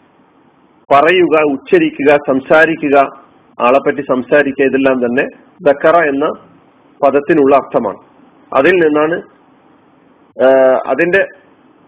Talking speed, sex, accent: 70 wpm, male, native